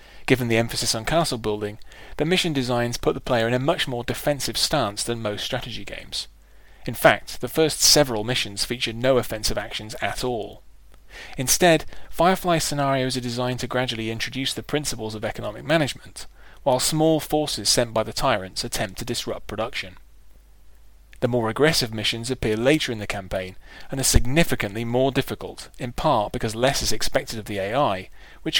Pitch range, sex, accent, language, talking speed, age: 110-140 Hz, male, British, English, 170 wpm, 30-49